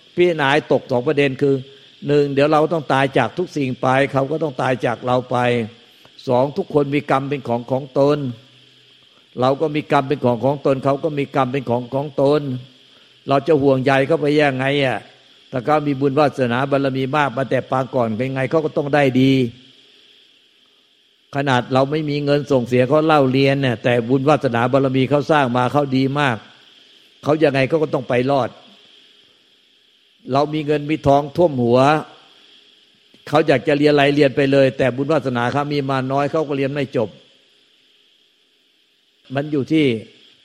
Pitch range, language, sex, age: 130-145 Hz, Thai, male, 60-79